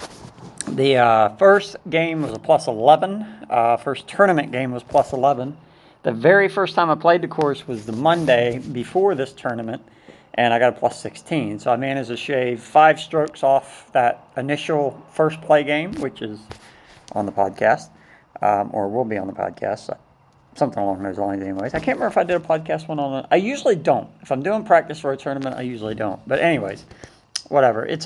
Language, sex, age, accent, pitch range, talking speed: English, male, 50-69, American, 120-155 Hz, 200 wpm